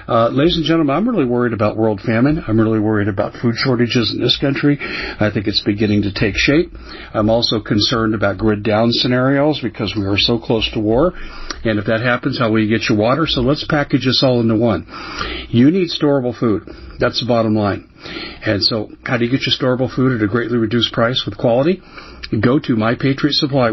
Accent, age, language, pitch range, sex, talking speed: American, 50-69, English, 110-135 Hz, male, 215 wpm